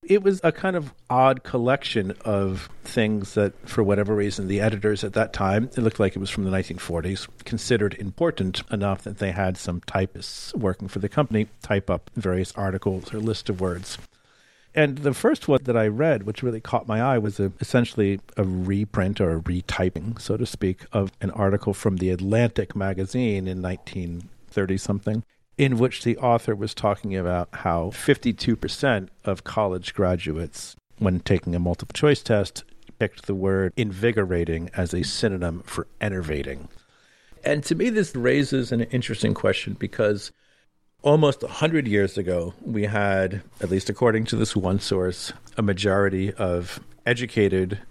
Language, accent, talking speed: English, American, 165 wpm